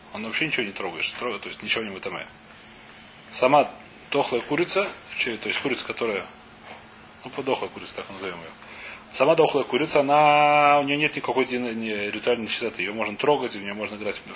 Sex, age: male, 30-49